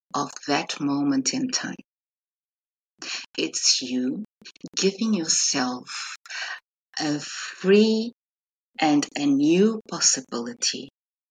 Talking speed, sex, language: 80 wpm, female, English